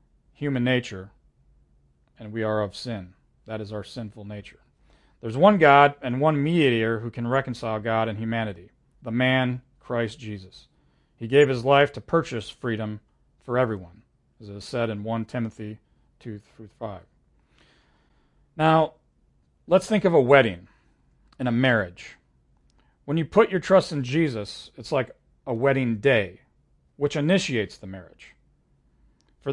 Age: 40-59